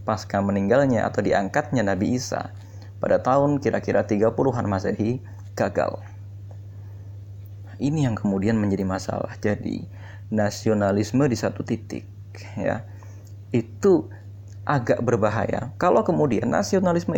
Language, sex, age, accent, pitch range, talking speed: Indonesian, male, 30-49, native, 100-115 Hz, 100 wpm